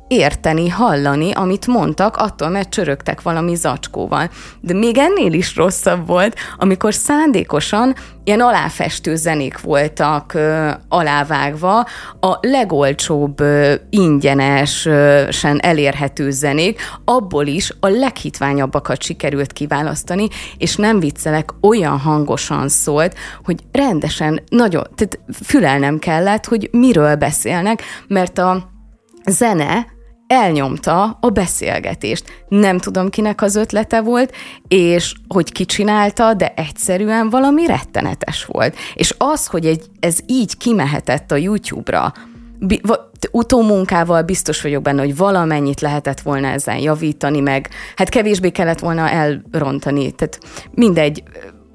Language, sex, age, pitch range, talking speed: Hungarian, female, 20-39, 145-205 Hz, 110 wpm